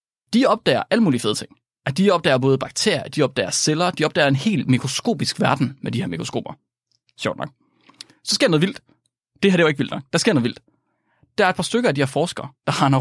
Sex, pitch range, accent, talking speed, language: male, 130-170 Hz, native, 250 wpm, Danish